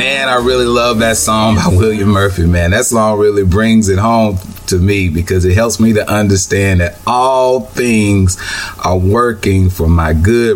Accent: American